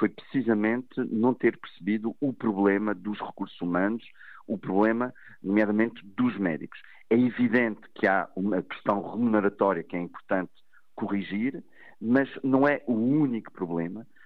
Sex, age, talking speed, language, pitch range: male, 50-69, 135 wpm, Portuguese, 105-135 Hz